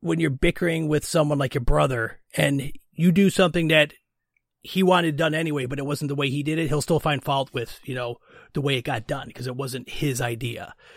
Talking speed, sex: 230 wpm, male